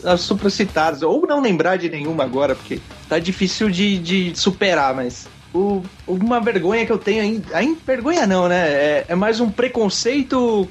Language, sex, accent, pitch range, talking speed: Portuguese, male, Brazilian, 155-200 Hz, 160 wpm